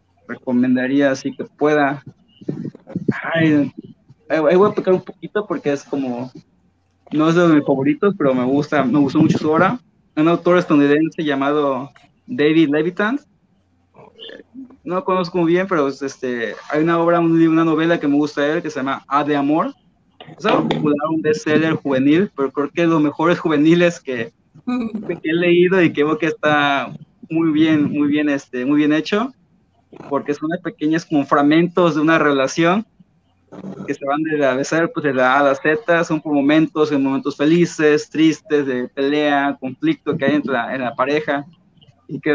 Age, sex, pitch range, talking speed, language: 20-39, male, 140-165 Hz, 180 wpm, Spanish